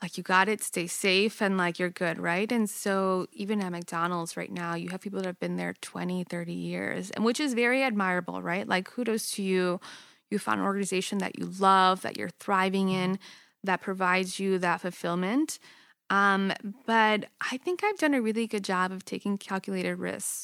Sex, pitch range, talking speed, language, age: female, 185-225 Hz, 200 wpm, English, 20-39